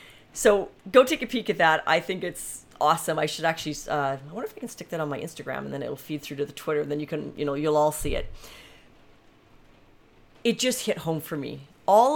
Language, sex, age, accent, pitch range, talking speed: English, female, 30-49, American, 145-190 Hz, 245 wpm